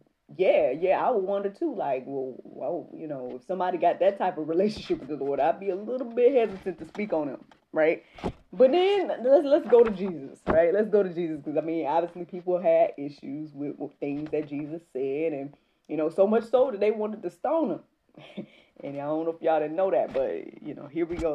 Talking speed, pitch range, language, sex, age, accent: 235 wpm, 150-220 Hz, English, female, 20-39, American